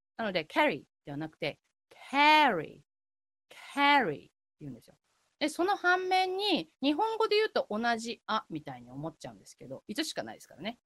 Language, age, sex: Japanese, 30-49, female